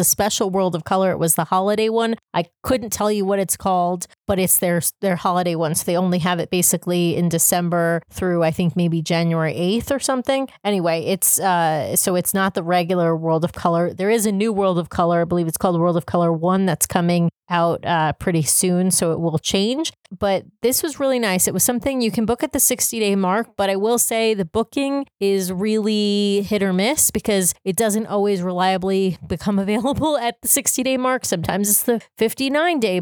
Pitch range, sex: 180-220 Hz, female